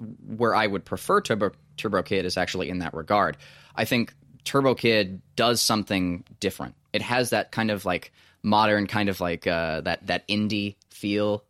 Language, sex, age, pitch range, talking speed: English, male, 20-39, 90-110 Hz, 175 wpm